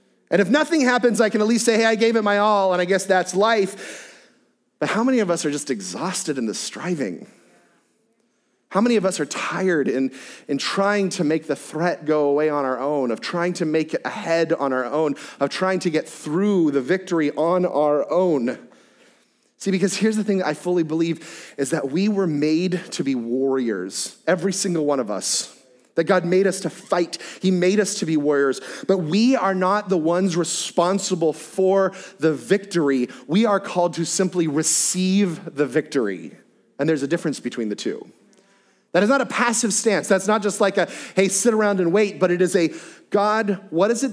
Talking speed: 205 wpm